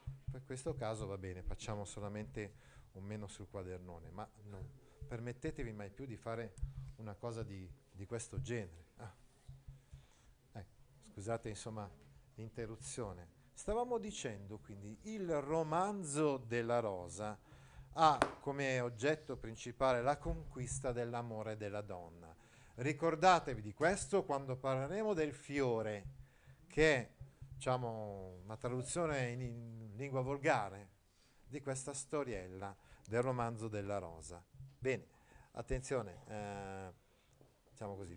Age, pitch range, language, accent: 40-59, 105-135 Hz, Italian, native